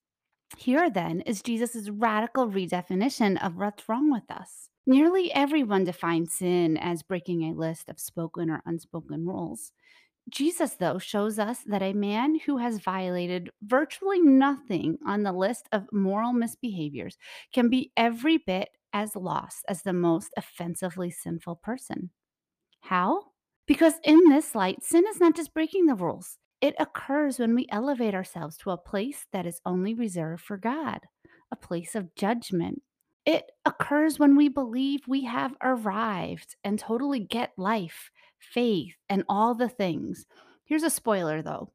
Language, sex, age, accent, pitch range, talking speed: English, female, 30-49, American, 180-265 Hz, 150 wpm